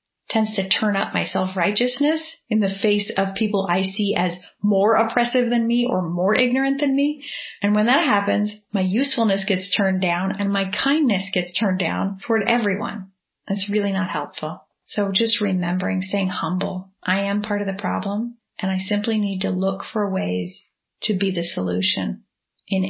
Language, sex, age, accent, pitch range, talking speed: English, female, 30-49, American, 185-210 Hz, 180 wpm